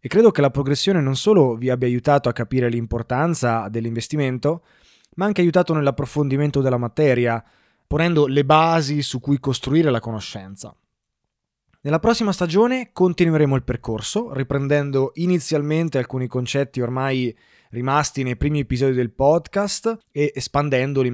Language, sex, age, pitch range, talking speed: Italian, male, 20-39, 120-155 Hz, 135 wpm